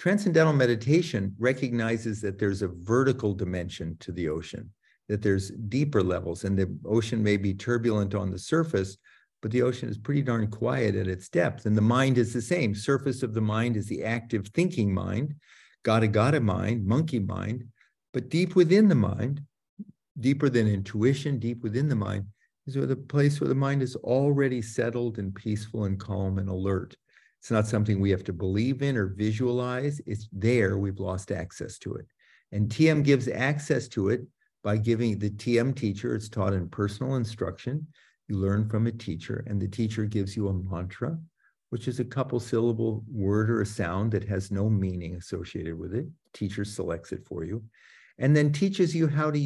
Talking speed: 185 wpm